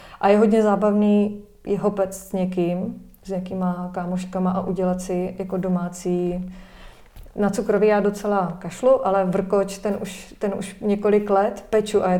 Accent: native